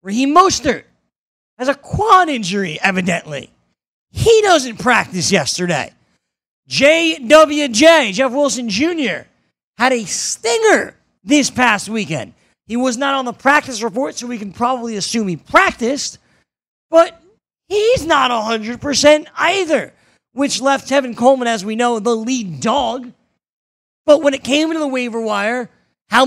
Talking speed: 135 wpm